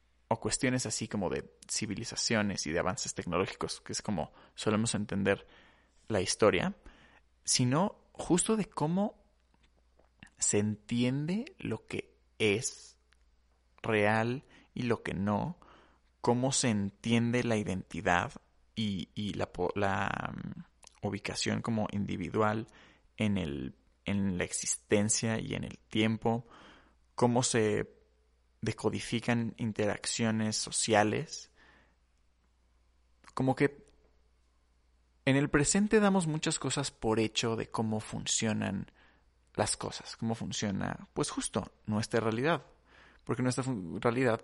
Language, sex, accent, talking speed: Spanish, male, Mexican, 110 wpm